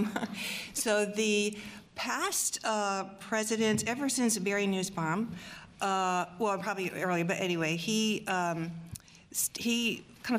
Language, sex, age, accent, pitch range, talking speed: English, female, 50-69, American, 175-205 Hz, 115 wpm